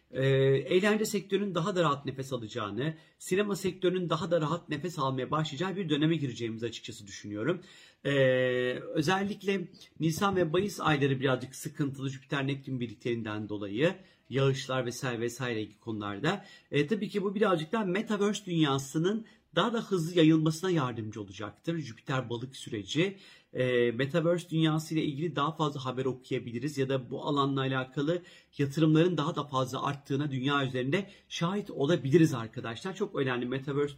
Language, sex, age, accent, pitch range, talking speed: Turkish, male, 40-59, native, 130-170 Hz, 140 wpm